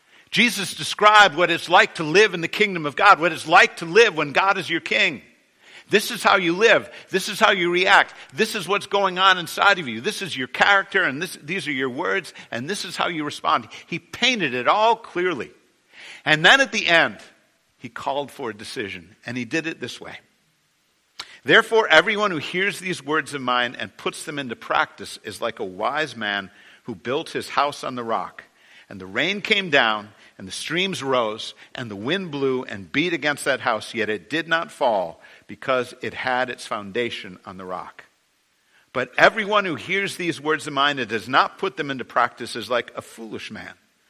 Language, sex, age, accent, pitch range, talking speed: English, male, 50-69, American, 115-195 Hz, 205 wpm